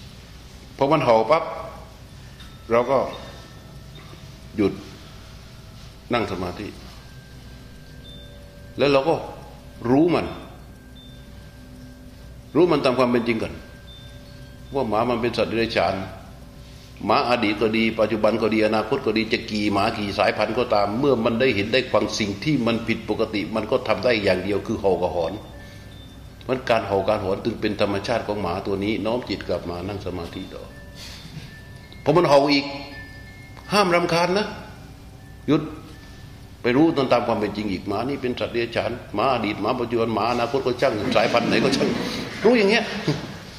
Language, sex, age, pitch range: Thai, male, 60-79, 100-130 Hz